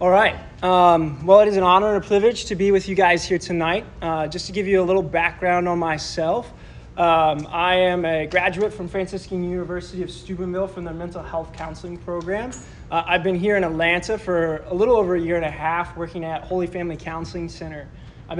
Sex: male